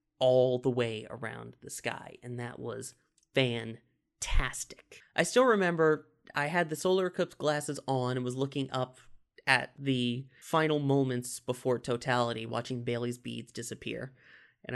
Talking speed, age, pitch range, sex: 140 wpm, 30-49, 125-155 Hz, male